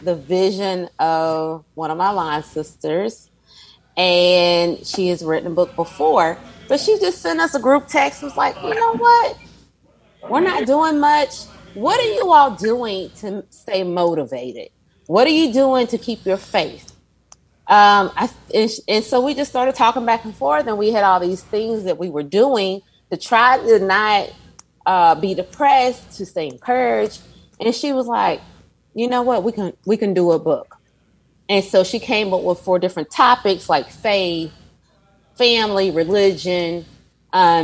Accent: American